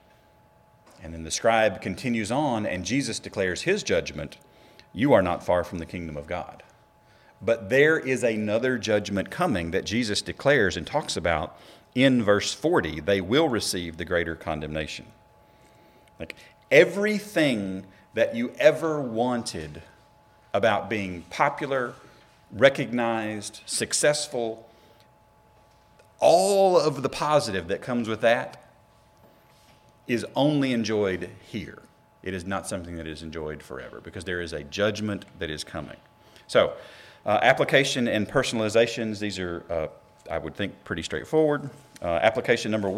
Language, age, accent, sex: English, 40-59, American, male